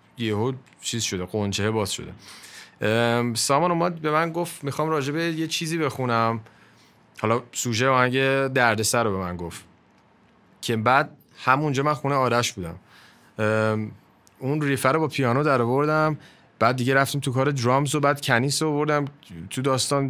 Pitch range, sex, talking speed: 105-140 Hz, male, 150 wpm